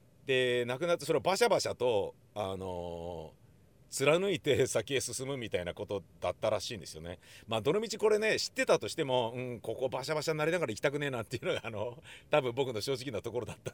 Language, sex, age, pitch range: Japanese, male, 40-59, 105-145 Hz